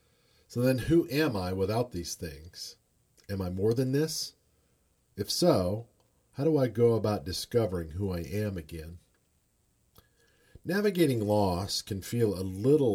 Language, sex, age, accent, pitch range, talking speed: English, male, 50-69, American, 85-115 Hz, 145 wpm